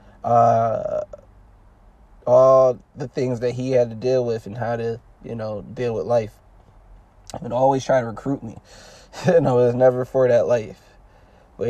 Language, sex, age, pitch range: English, male, 20-39, 105-125 Hz